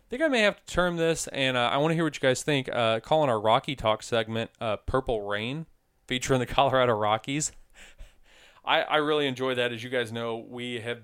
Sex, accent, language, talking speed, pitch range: male, American, English, 230 wpm, 115-150 Hz